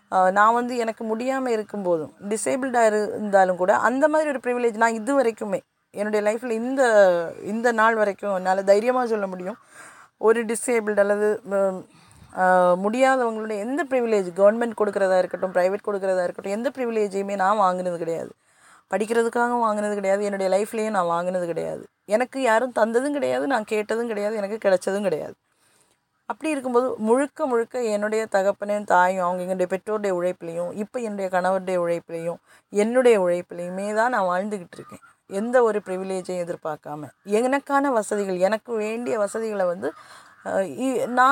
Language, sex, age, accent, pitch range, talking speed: Tamil, female, 20-39, native, 185-235 Hz, 135 wpm